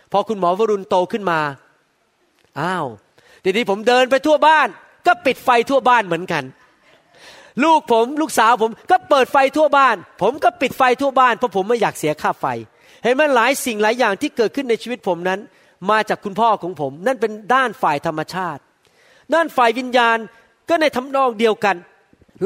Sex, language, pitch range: male, Thai, 190-265 Hz